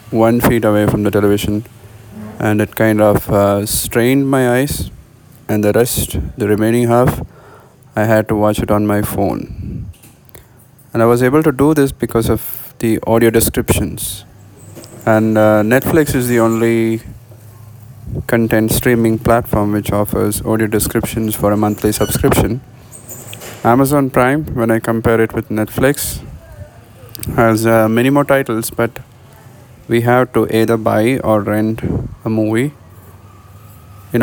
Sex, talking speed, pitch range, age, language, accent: male, 140 wpm, 105-120 Hz, 20-39, English, Indian